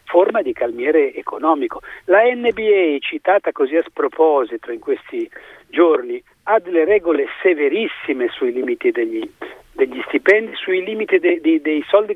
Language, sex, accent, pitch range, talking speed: Italian, male, native, 260-410 Hz, 140 wpm